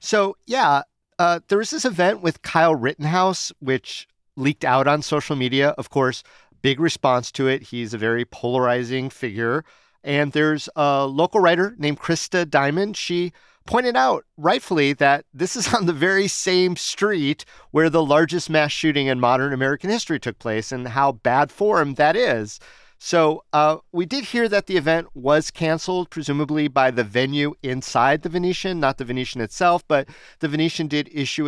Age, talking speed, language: 40-59, 170 wpm, English